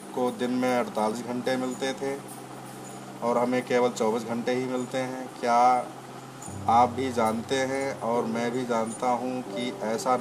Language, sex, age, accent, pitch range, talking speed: Hindi, male, 30-49, native, 115-125 Hz, 160 wpm